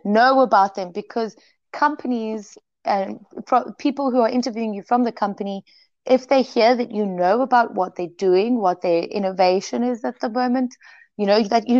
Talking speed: 180 wpm